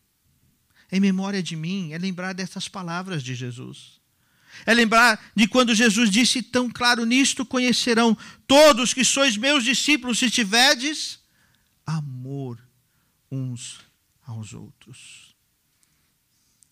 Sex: male